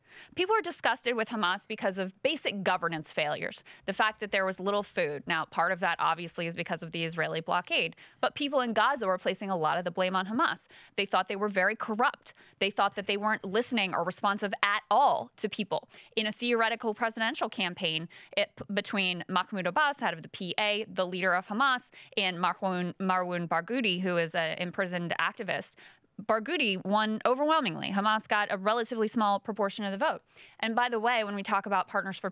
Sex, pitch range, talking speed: female, 185-230 Hz, 195 wpm